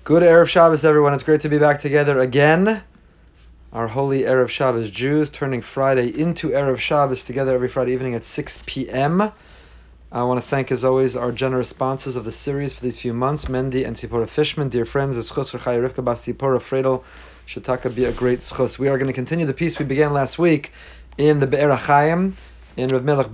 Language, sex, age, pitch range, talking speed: English, male, 30-49, 130-185 Hz, 190 wpm